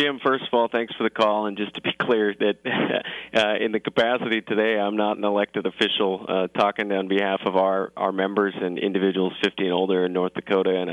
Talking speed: 225 wpm